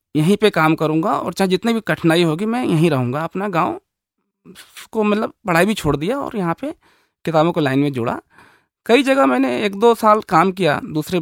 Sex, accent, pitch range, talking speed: male, native, 145-215 Hz, 205 wpm